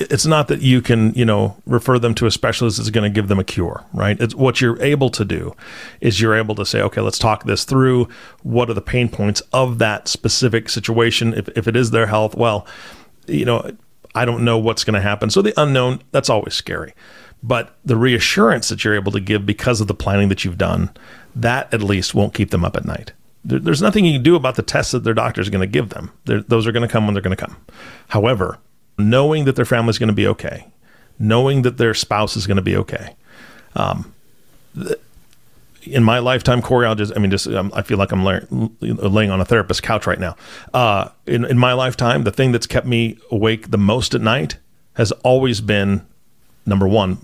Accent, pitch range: American, 105-125 Hz